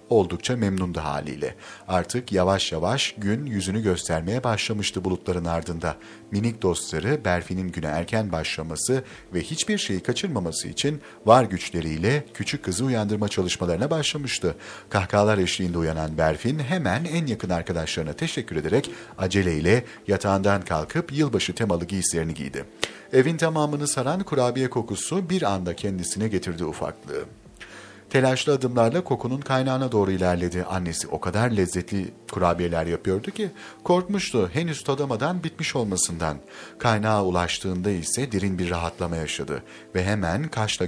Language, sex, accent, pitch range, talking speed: Turkish, male, native, 90-130 Hz, 125 wpm